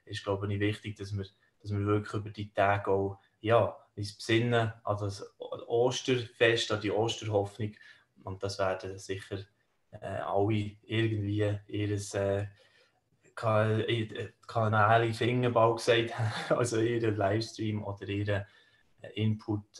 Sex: male